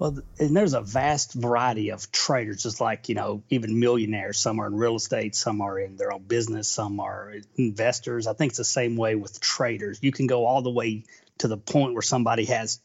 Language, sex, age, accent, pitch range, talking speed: English, male, 40-59, American, 110-125 Hz, 225 wpm